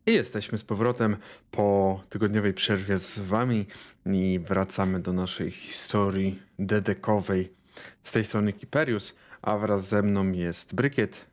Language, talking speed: Polish, 135 wpm